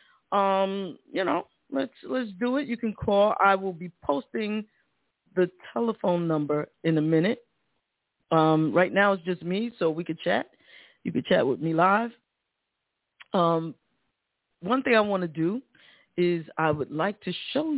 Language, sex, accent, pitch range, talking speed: English, female, American, 155-200 Hz, 165 wpm